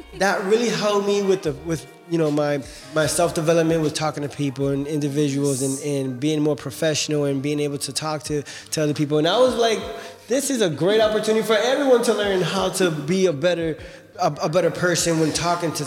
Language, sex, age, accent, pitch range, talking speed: English, male, 20-39, American, 145-180 Hz, 220 wpm